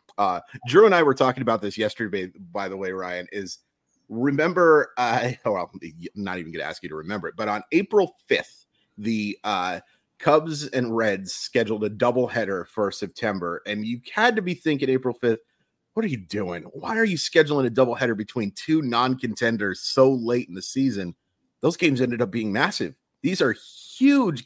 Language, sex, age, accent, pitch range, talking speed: English, male, 30-49, American, 105-135 Hz, 185 wpm